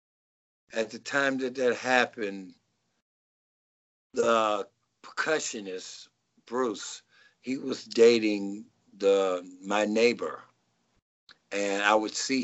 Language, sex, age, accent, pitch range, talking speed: English, male, 60-79, American, 105-130 Hz, 90 wpm